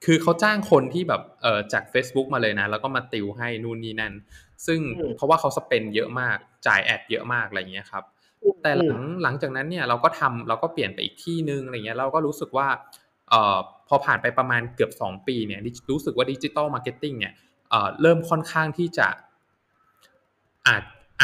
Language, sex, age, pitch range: Thai, male, 20-39, 115-165 Hz